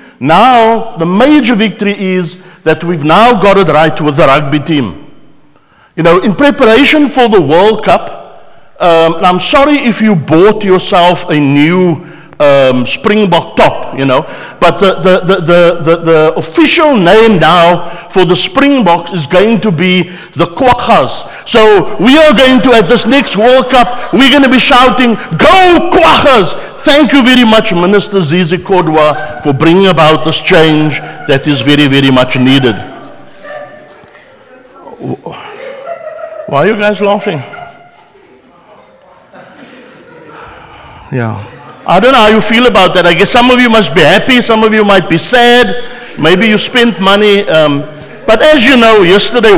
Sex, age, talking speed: male, 60-79, 155 wpm